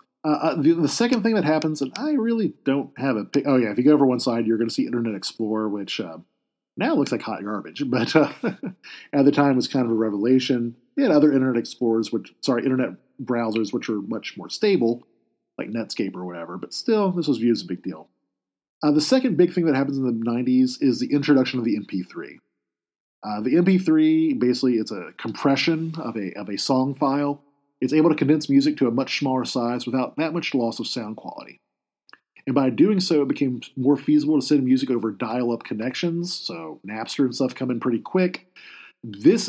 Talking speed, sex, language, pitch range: 215 wpm, male, English, 120-155 Hz